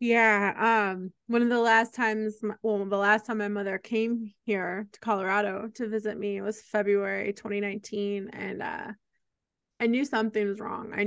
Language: English